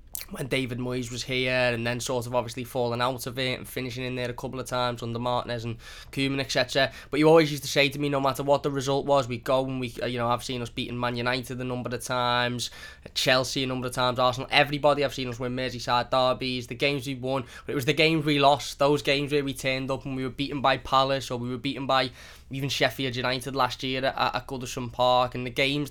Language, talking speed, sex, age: English, 255 wpm, male, 10-29